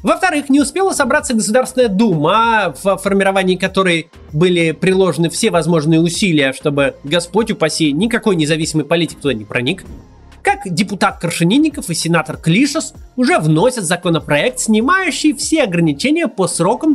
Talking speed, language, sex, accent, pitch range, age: 135 wpm, Russian, male, native, 170-255 Hz, 30-49